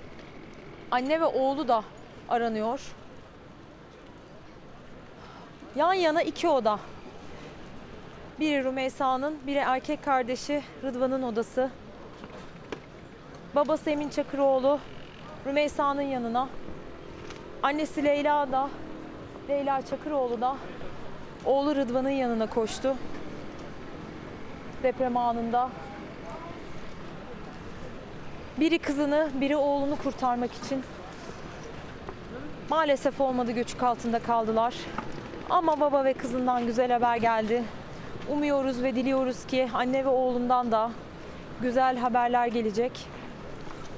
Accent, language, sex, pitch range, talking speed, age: native, Turkish, female, 245-280 Hz, 85 wpm, 30-49